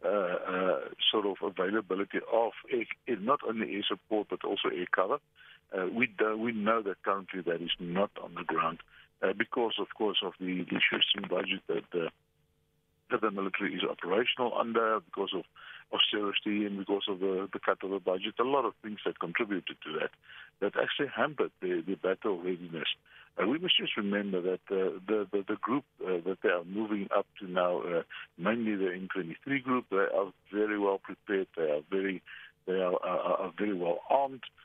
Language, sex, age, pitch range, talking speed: English, male, 60-79, 95-120 Hz, 185 wpm